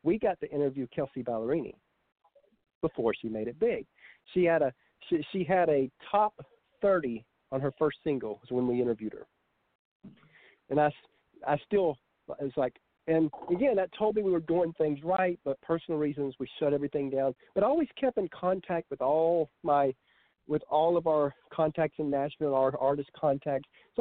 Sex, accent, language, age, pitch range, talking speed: male, American, English, 50-69, 140-190 Hz, 185 wpm